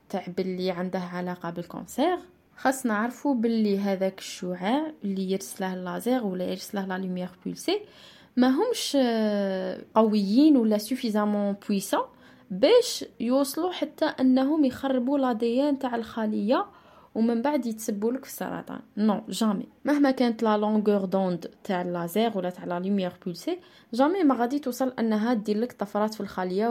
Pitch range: 195-250 Hz